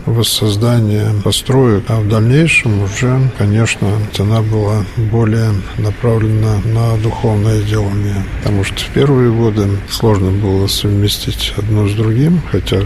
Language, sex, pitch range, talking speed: Russian, male, 100-120 Hz, 120 wpm